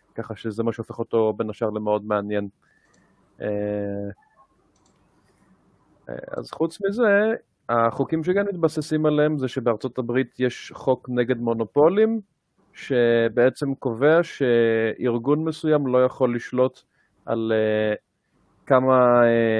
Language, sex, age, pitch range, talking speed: Hebrew, male, 30-49, 115-140 Hz, 100 wpm